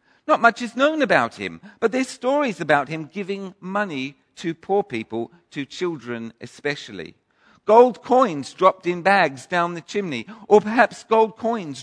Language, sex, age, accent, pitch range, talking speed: English, male, 50-69, British, 135-205 Hz, 155 wpm